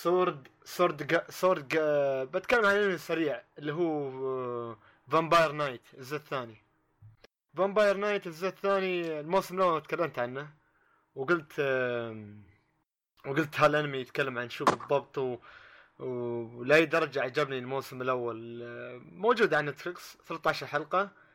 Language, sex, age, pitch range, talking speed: Arabic, male, 30-49, 140-180 Hz, 110 wpm